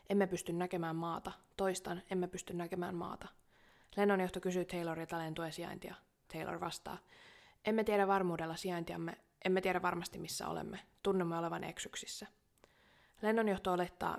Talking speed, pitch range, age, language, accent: 125 wpm, 175-195 Hz, 20-39, Finnish, native